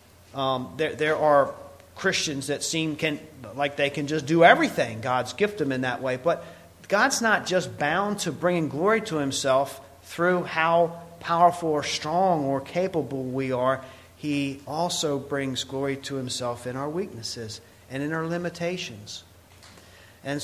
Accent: American